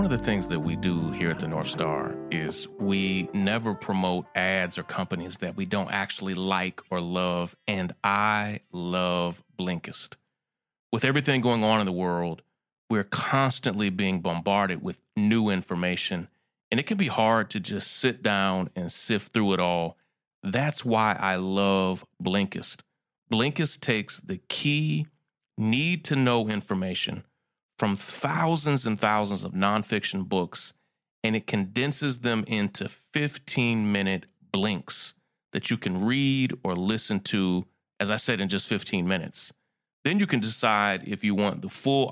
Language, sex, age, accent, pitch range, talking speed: English, male, 30-49, American, 95-120 Hz, 150 wpm